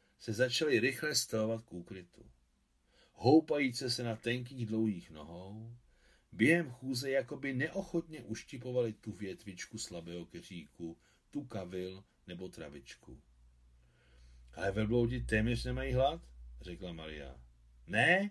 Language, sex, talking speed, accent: Czech, male, 105 wpm, native